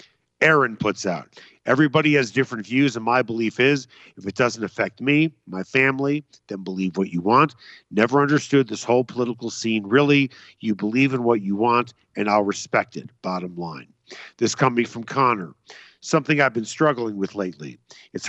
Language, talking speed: English, 175 wpm